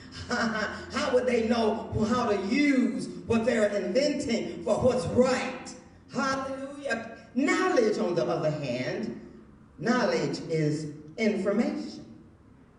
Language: English